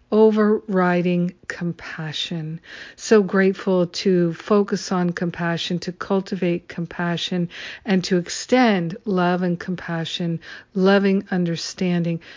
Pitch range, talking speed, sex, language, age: 175-205 Hz, 90 wpm, female, English, 50-69